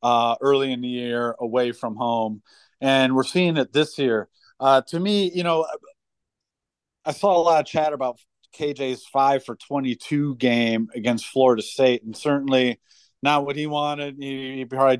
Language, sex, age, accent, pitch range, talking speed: English, male, 40-59, American, 125-145 Hz, 160 wpm